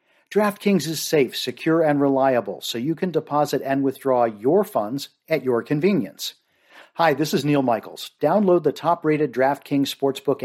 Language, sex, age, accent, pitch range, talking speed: English, male, 50-69, American, 130-165 Hz, 155 wpm